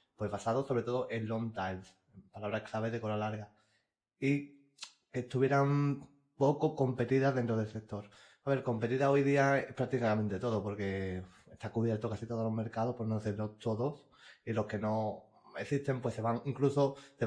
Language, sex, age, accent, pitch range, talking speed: Spanish, male, 20-39, Spanish, 110-130 Hz, 165 wpm